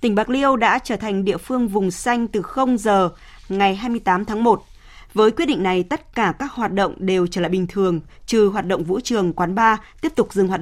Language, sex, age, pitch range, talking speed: Vietnamese, female, 20-39, 185-230 Hz, 235 wpm